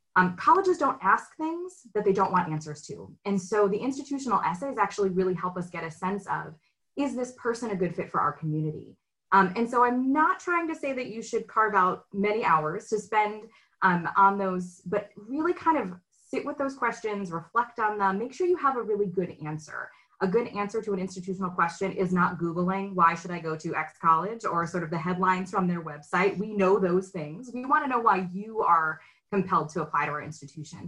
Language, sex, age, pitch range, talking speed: English, female, 20-39, 170-215 Hz, 220 wpm